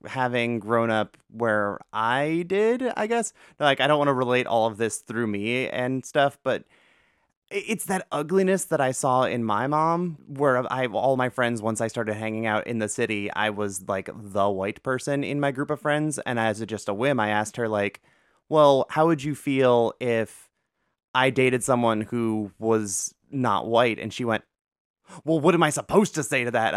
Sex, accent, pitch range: male, American, 110-150 Hz